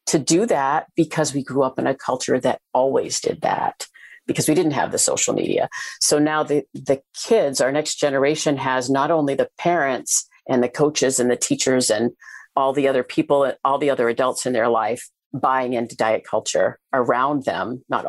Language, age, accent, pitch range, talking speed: English, 40-59, American, 125-145 Hz, 200 wpm